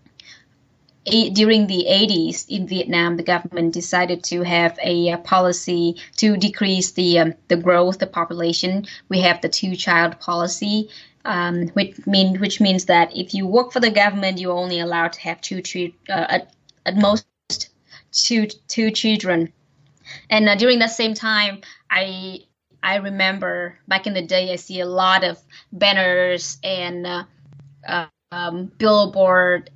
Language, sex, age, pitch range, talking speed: Vietnamese, female, 20-39, 175-195 Hz, 155 wpm